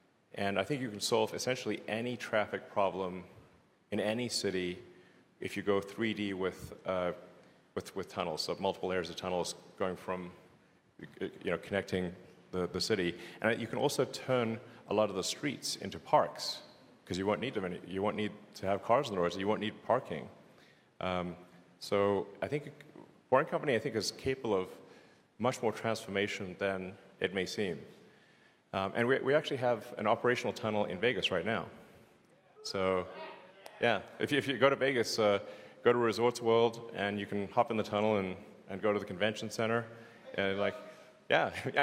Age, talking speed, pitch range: 30-49, 180 wpm, 95-120 Hz